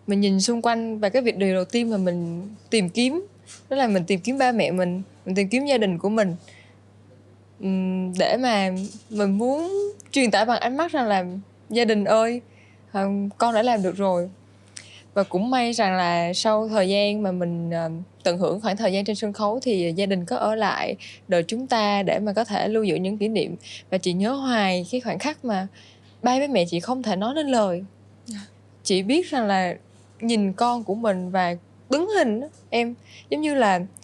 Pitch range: 185-235 Hz